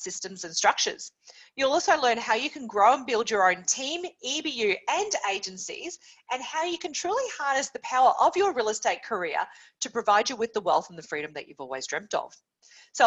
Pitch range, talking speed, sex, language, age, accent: 205-345 Hz, 210 wpm, female, English, 40-59, Australian